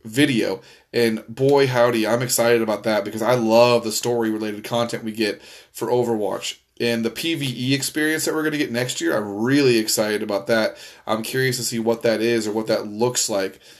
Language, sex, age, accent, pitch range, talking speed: English, male, 20-39, American, 110-130 Hz, 205 wpm